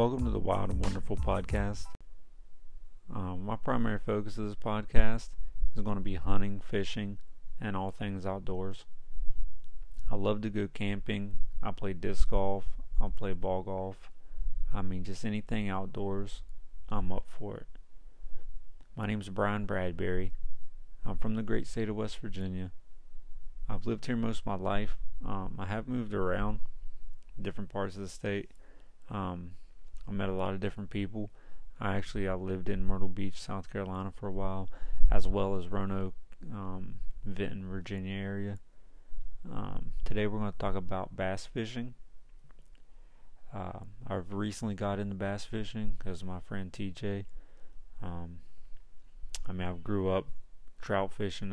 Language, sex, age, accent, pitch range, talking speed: English, male, 30-49, American, 95-105 Hz, 155 wpm